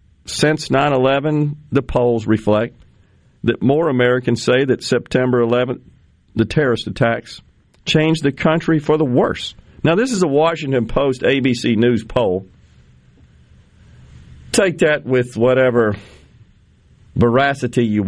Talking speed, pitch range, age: 120 wpm, 110-140 Hz, 50-69